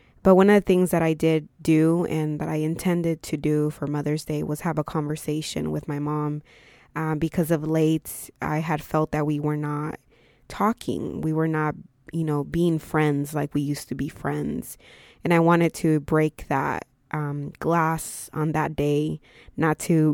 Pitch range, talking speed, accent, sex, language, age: 150-165 Hz, 190 wpm, American, female, English, 20-39